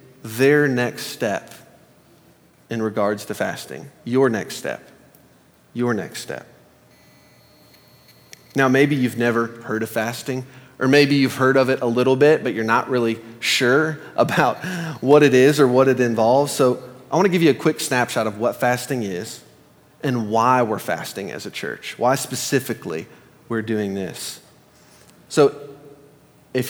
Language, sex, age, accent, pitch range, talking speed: English, male, 30-49, American, 115-140 Hz, 155 wpm